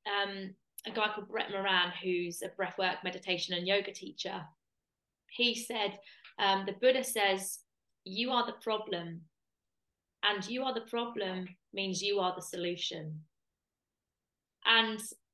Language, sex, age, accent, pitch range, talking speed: English, female, 20-39, British, 185-225 Hz, 135 wpm